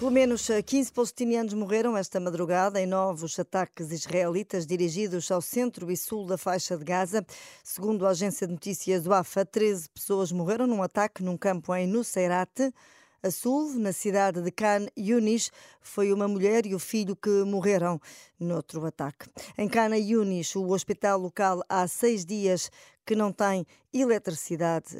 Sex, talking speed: female, 160 wpm